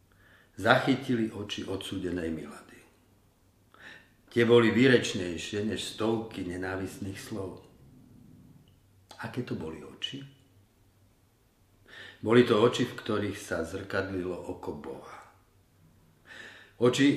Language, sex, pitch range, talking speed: Slovak, male, 95-115 Hz, 85 wpm